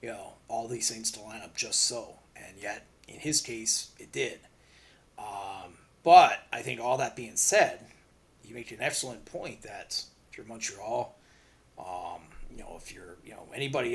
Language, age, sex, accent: English, 30-49, male, American